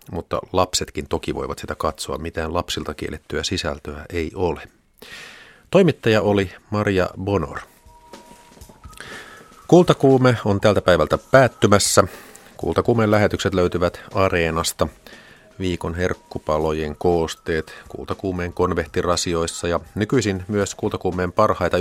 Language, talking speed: Finnish, 95 wpm